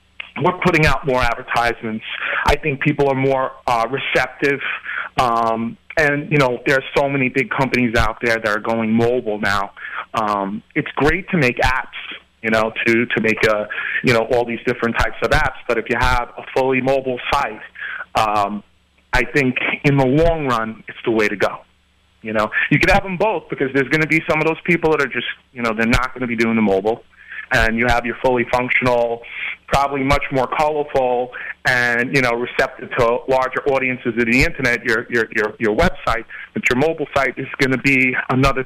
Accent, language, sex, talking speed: American, English, male, 205 wpm